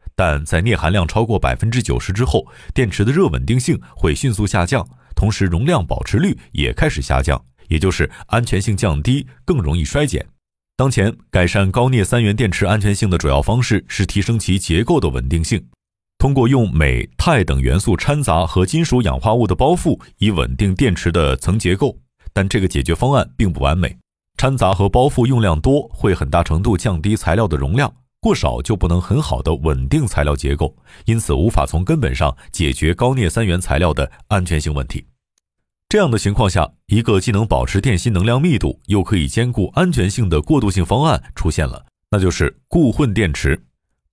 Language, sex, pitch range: Chinese, male, 80-115 Hz